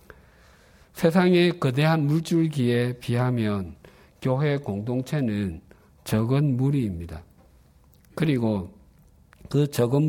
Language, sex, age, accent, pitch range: Korean, male, 50-69, native, 90-145 Hz